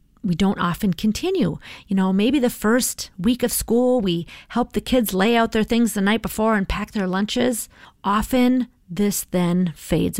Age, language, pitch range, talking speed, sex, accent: 40-59, English, 185-245 Hz, 180 wpm, female, American